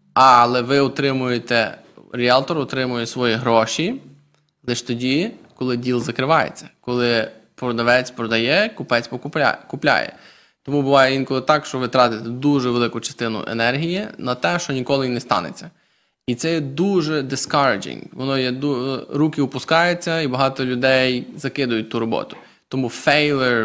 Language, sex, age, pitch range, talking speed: English, male, 20-39, 125-150 Hz, 125 wpm